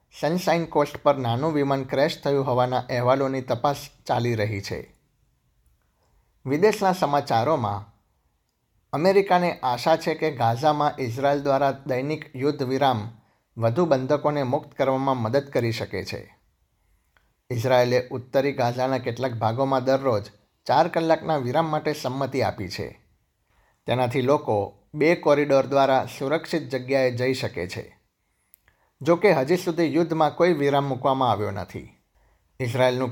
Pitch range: 120-145 Hz